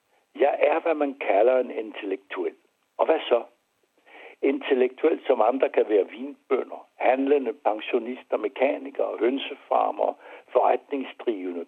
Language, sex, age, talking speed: Danish, male, 60-79, 110 wpm